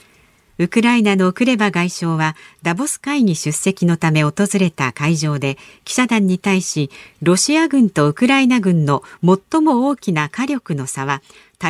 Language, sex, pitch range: Japanese, female, 160-245 Hz